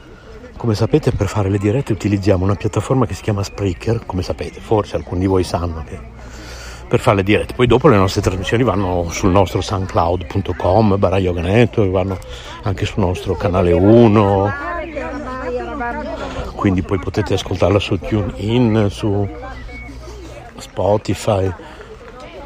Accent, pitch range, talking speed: native, 90-115 Hz, 130 wpm